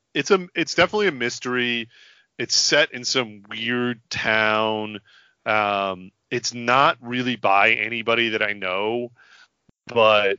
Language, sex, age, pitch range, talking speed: English, male, 30-49, 100-125 Hz, 125 wpm